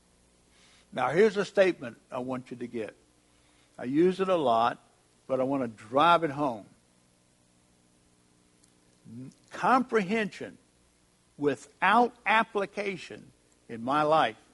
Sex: male